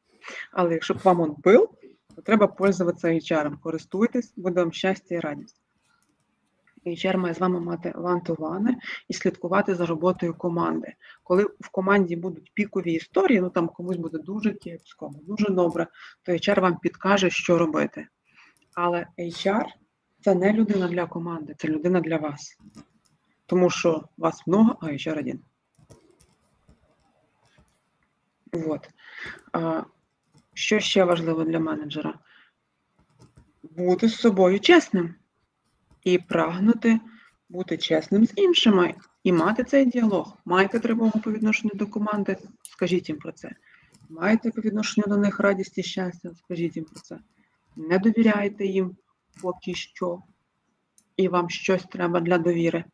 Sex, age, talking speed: female, 20-39, 135 wpm